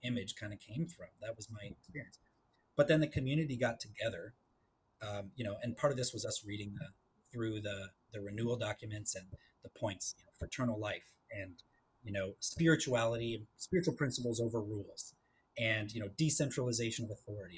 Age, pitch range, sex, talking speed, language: 30-49, 105-125 Hz, male, 180 wpm, English